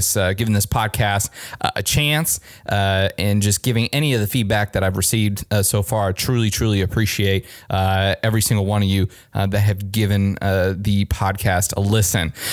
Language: English